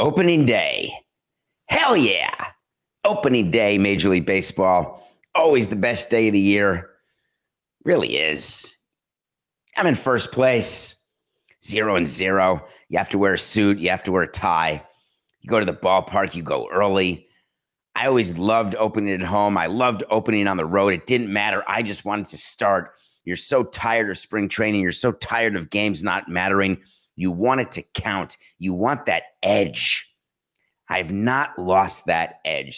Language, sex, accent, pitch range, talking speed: English, male, American, 90-110 Hz, 170 wpm